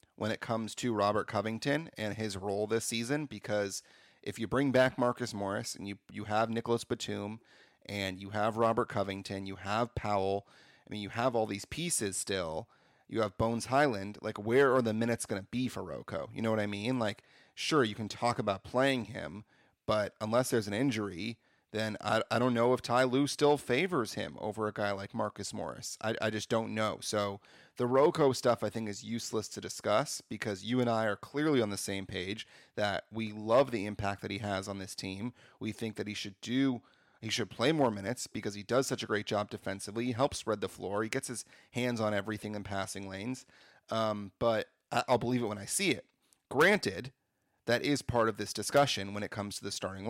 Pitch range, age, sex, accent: 100-120 Hz, 30-49, male, American